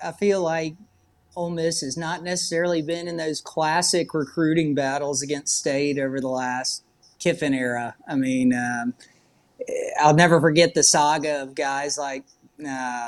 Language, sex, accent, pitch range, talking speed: English, male, American, 140-175 Hz, 145 wpm